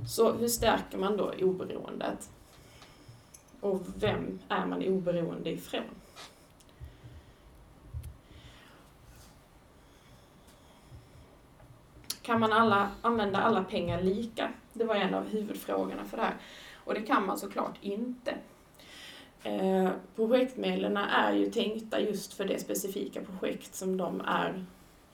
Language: Swedish